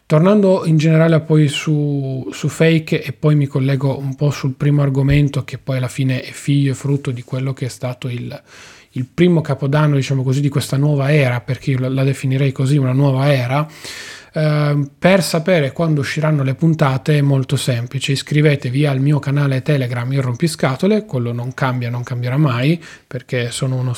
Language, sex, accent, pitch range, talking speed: Italian, male, native, 130-150 Hz, 180 wpm